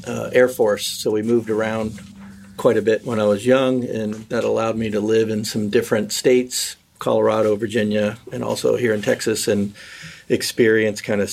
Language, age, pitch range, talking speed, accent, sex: French, 50-69, 100-110 Hz, 185 wpm, American, male